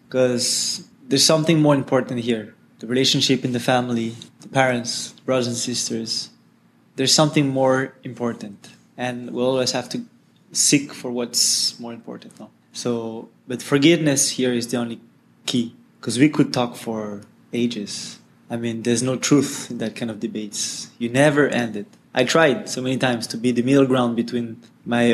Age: 20-39